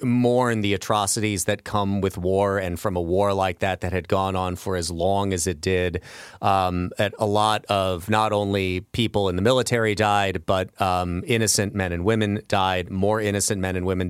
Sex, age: male, 30-49